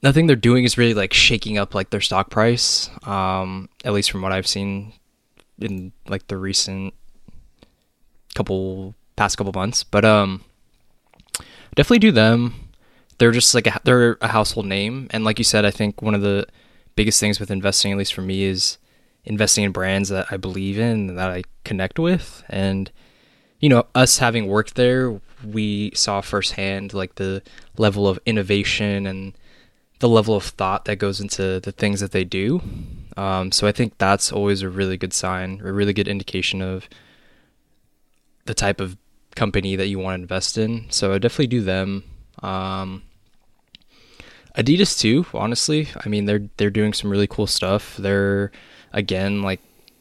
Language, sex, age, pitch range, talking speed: English, male, 20-39, 95-110 Hz, 170 wpm